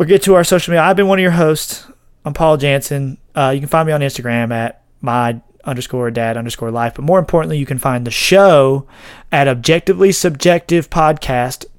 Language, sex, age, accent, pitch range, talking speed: English, male, 30-49, American, 135-170 Hz, 205 wpm